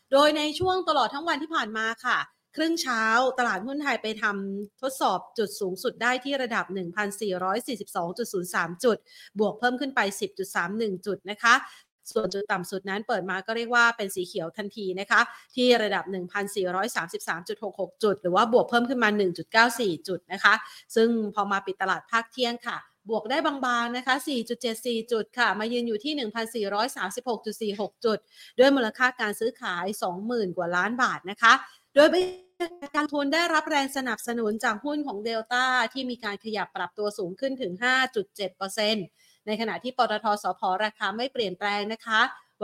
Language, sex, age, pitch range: Thai, female, 30-49, 200-250 Hz